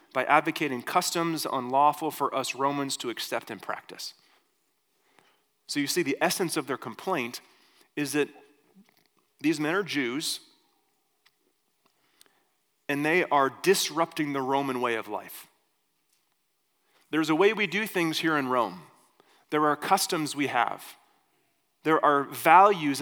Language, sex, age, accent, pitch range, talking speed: English, male, 30-49, American, 145-200 Hz, 135 wpm